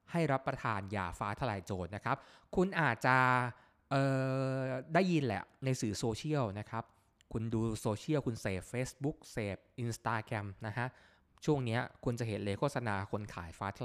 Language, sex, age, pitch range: Thai, male, 20-39, 100-130 Hz